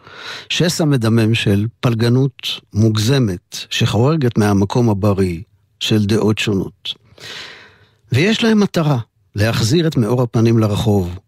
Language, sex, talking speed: Hebrew, male, 100 wpm